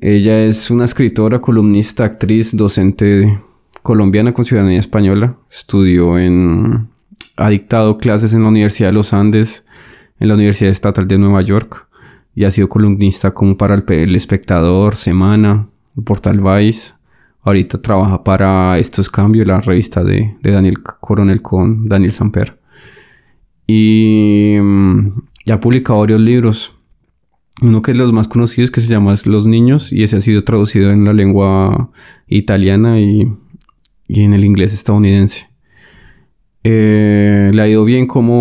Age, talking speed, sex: 20-39, 145 wpm, male